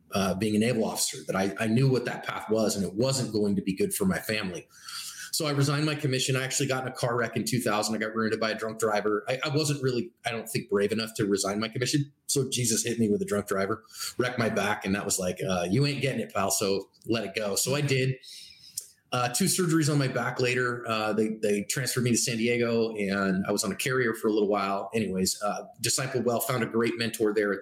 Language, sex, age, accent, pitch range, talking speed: English, male, 30-49, American, 105-130 Hz, 260 wpm